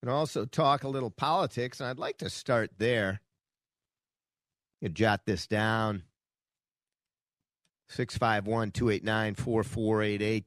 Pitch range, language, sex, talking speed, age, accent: 95-115 Hz, English, male, 115 wpm, 50-69, American